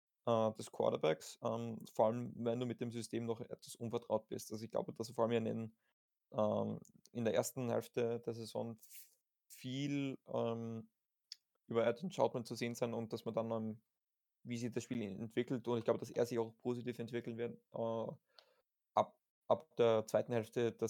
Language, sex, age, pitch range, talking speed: German, male, 20-39, 115-125 Hz, 185 wpm